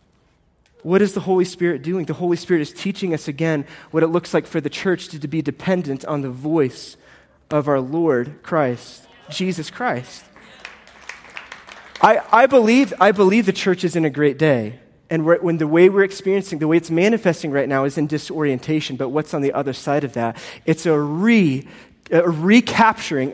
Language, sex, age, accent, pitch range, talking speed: English, male, 30-49, American, 145-185 Hz, 190 wpm